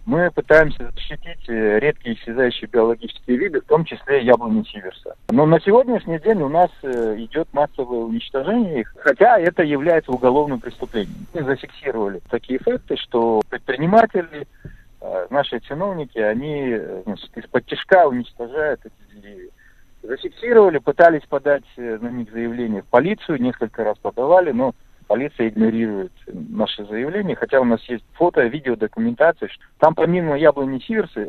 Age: 50-69